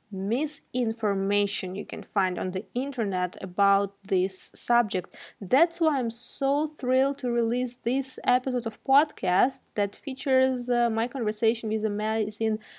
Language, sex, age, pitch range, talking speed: English, female, 20-39, 210-260 Hz, 130 wpm